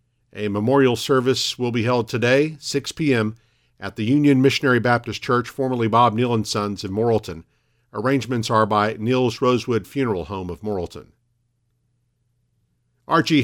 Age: 50-69